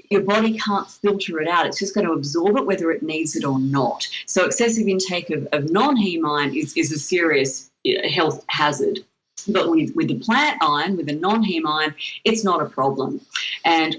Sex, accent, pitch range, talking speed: female, Australian, 145-205 Hz, 195 wpm